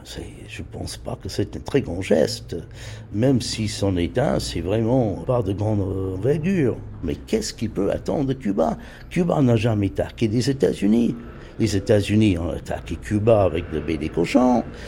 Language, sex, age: French, male, 60-79